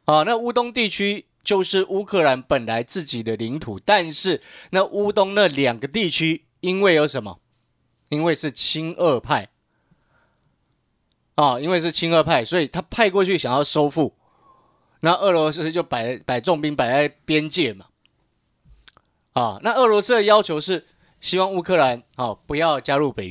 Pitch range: 145-205 Hz